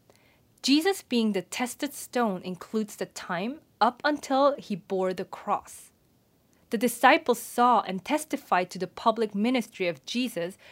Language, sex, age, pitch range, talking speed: English, female, 30-49, 195-270 Hz, 140 wpm